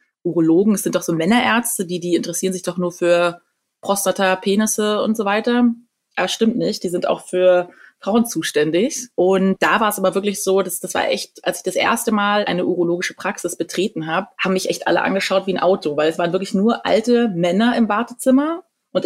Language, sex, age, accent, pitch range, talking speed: German, female, 20-39, German, 175-205 Hz, 210 wpm